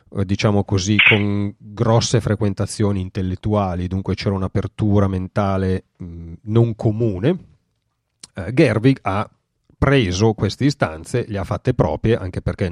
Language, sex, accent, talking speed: Italian, male, native, 120 wpm